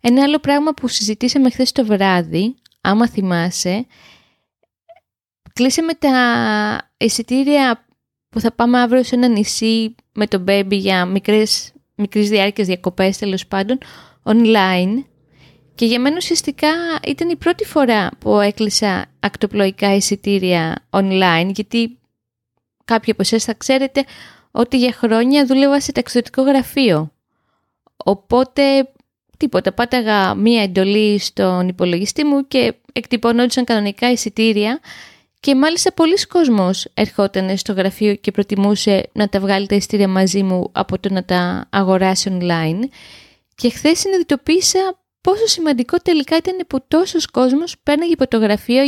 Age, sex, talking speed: 20-39, female, 125 wpm